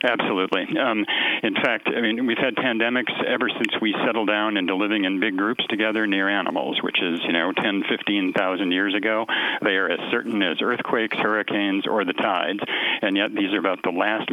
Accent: American